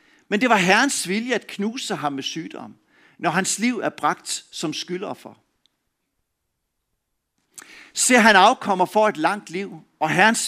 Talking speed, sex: 155 wpm, male